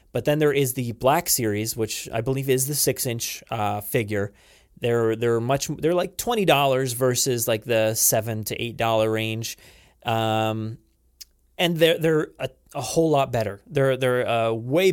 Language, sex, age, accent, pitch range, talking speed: English, male, 30-49, American, 115-160 Hz, 170 wpm